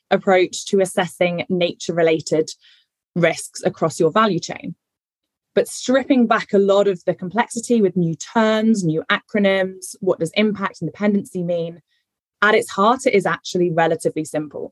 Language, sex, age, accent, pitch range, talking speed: English, female, 20-39, British, 165-215 Hz, 150 wpm